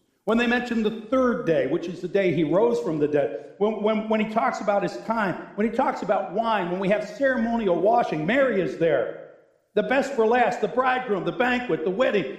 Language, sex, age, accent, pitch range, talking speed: English, male, 60-79, American, 175-250 Hz, 220 wpm